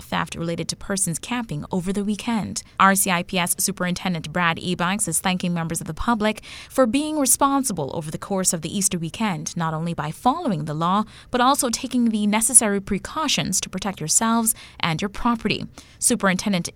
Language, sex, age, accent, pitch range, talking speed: English, female, 30-49, American, 175-220 Hz, 170 wpm